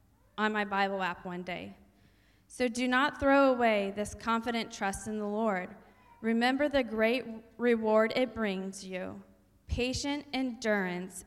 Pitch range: 195-235 Hz